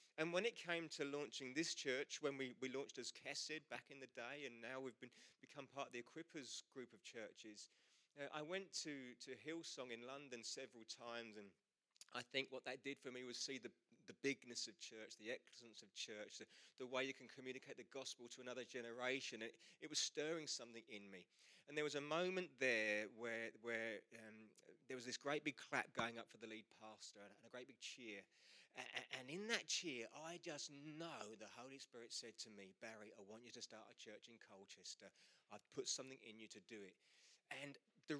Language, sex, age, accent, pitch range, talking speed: English, male, 30-49, British, 115-160 Hz, 215 wpm